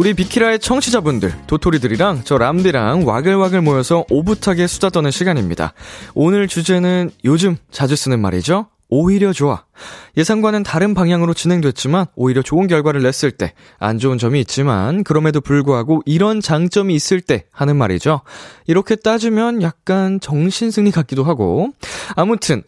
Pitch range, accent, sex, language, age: 110-185 Hz, native, male, Korean, 20-39